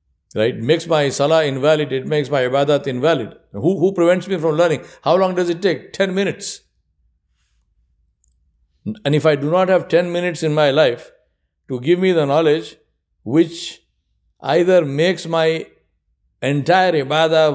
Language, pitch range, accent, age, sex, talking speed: English, 130-185 Hz, Indian, 60-79, male, 155 wpm